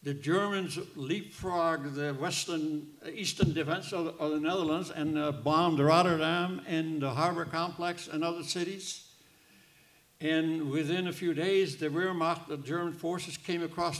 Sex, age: male, 70-89